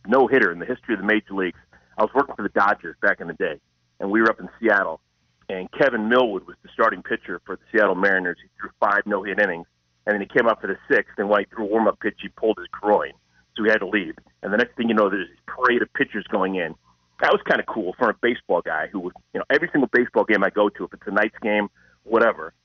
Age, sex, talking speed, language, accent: 40-59, male, 275 wpm, English, American